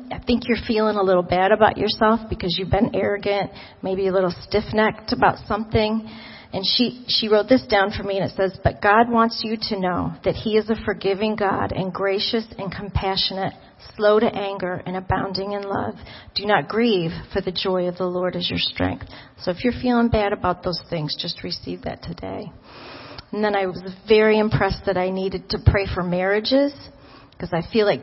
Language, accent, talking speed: English, American, 200 wpm